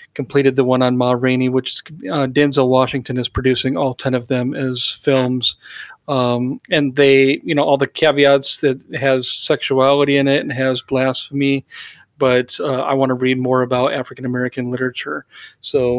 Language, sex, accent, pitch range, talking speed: English, male, American, 130-155 Hz, 170 wpm